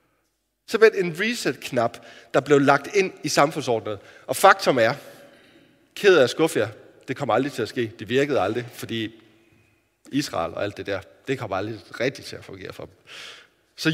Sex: male